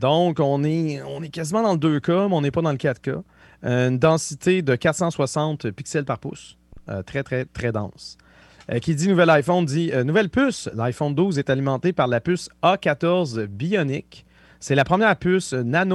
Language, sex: French, male